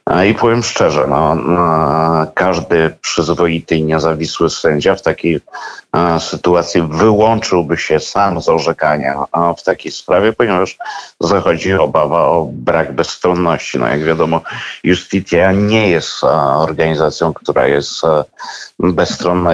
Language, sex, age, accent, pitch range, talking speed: Polish, male, 50-69, native, 75-90 Hz, 110 wpm